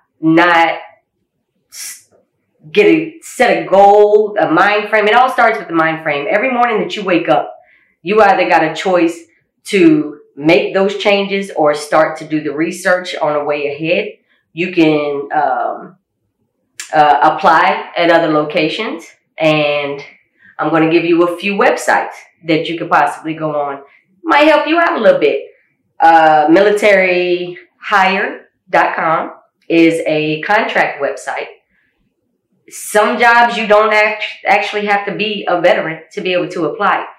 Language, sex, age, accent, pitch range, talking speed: English, female, 30-49, American, 155-210 Hz, 150 wpm